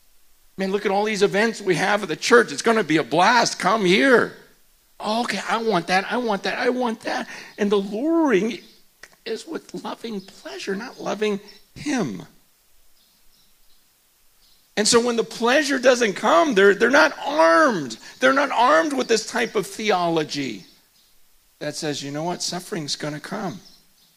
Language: English